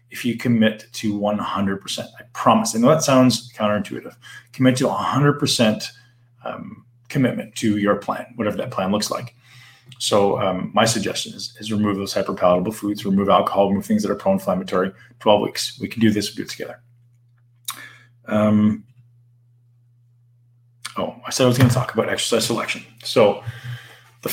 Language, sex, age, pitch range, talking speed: English, male, 30-49, 110-130 Hz, 150 wpm